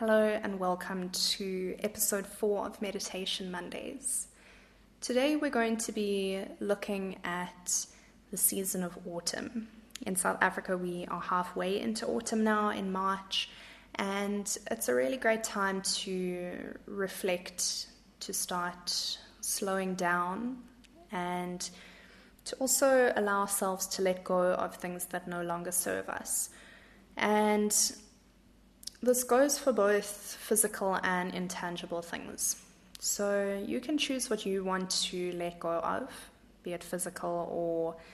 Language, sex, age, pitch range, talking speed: English, female, 20-39, 180-215 Hz, 130 wpm